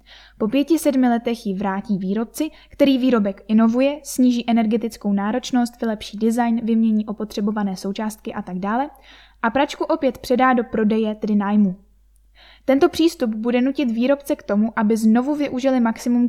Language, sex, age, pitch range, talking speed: Czech, female, 10-29, 220-270 Hz, 145 wpm